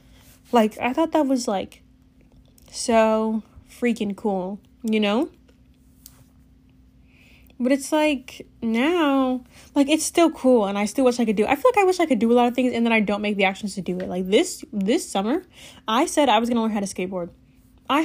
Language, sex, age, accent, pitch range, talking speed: English, female, 10-29, American, 205-290 Hz, 205 wpm